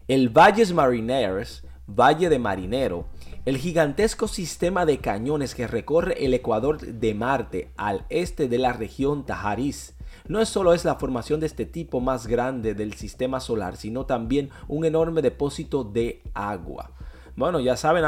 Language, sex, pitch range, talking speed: Spanish, male, 115-150 Hz, 155 wpm